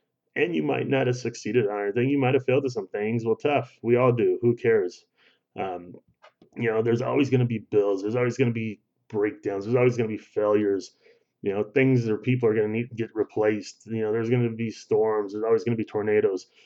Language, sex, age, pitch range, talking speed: English, male, 30-49, 105-140 Hz, 245 wpm